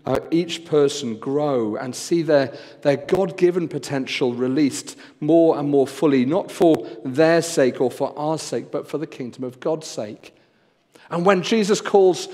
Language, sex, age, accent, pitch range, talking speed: English, male, 40-59, British, 130-170 Hz, 165 wpm